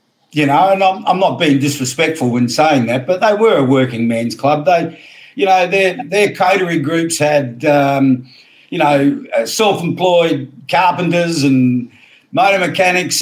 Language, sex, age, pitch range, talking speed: English, male, 50-69, 130-165 Hz, 155 wpm